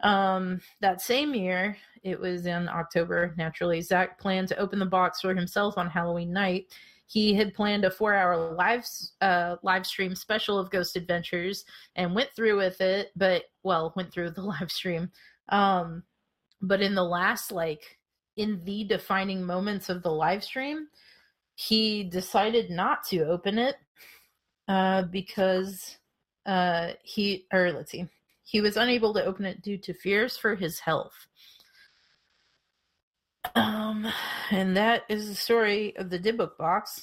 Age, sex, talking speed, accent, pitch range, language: 30-49, female, 155 wpm, American, 180-210 Hz, English